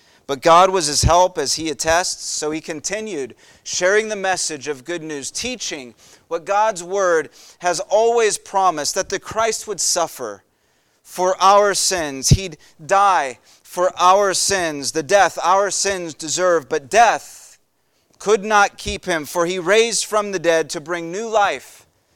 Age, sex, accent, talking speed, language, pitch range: 30-49, male, American, 155 wpm, English, 165-215 Hz